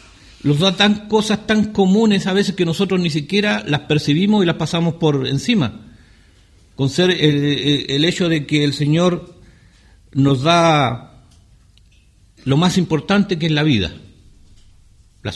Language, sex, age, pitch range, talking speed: English, male, 50-69, 100-170 Hz, 150 wpm